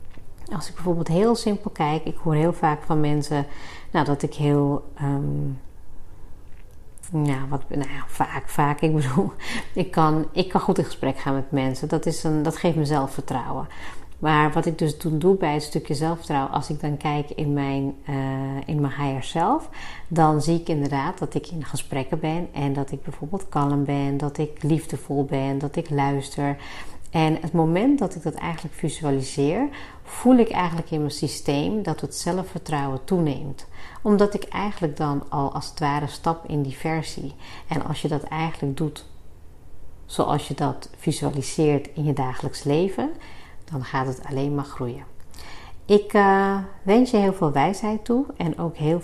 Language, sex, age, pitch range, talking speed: Dutch, female, 40-59, 140-165 Hz, 180 wpm